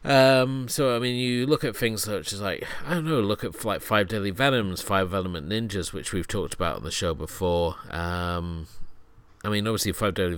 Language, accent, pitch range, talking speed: English, British, 90-110 Hz, 215 wpm